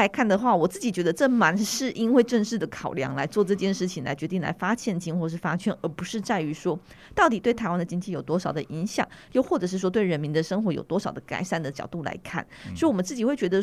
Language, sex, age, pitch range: Chinese, female, 30-49, 170-230 Hz